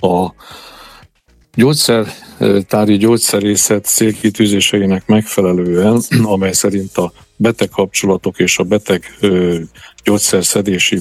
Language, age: Hungarian, 50-69